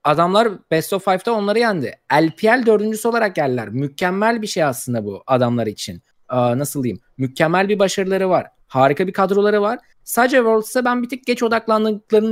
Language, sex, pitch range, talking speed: Turkish, male, 140-205 Hz, 170 wpm